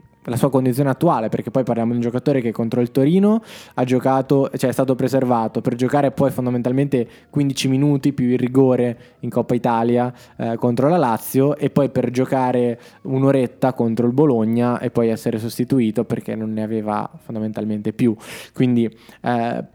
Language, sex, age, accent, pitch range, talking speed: Italian, male, 20-39, native, 120-135 Hz, 170 wpm